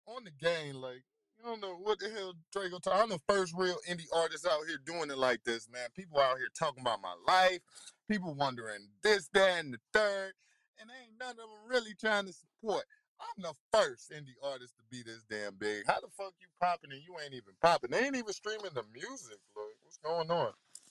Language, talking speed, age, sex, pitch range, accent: English, 225 wpm, 20-39, male, 140-200 Hz, American